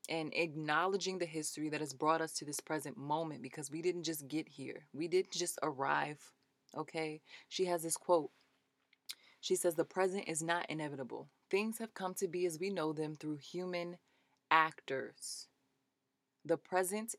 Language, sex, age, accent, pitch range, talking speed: English, female, 20-39, American, 150-175 Hz, 170 wpm